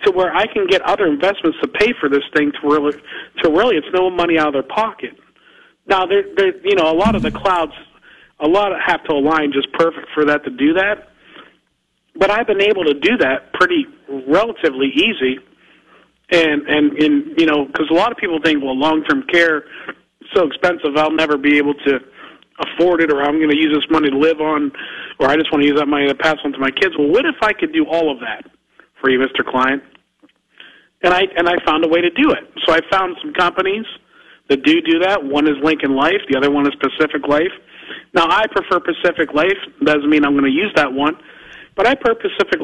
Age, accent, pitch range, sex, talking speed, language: 40-59, American, 145-200 Hz, male, 230 wpm, English